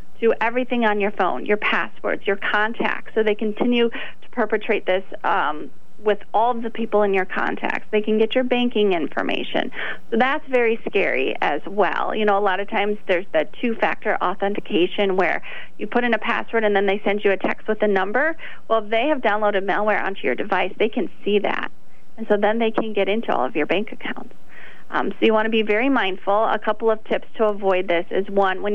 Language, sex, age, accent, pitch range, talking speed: English, female, 30-49, American, 200-225 Hz, 215 wpm